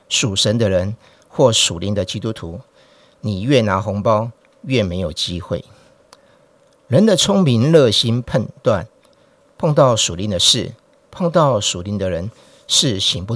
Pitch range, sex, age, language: 105-150 Hz, male, 50-69, Chinese